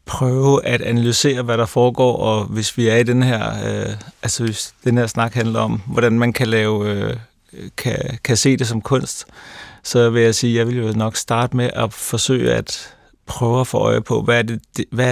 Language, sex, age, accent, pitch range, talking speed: Danish, male, 30-49, native, 115-130 Hz, 220 wpm